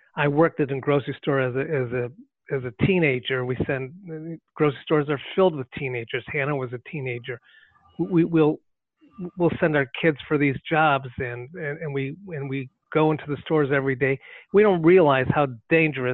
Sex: male